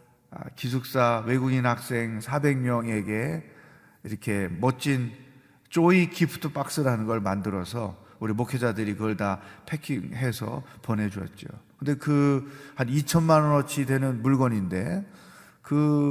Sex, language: male, Korean